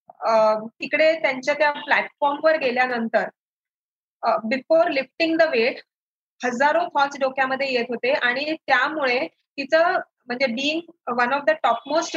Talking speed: 120 wpm